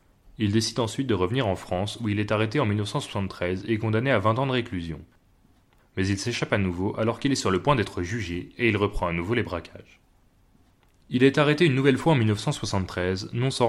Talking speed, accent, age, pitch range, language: 220 wpm, French, 30-49, 95-120 Hz, French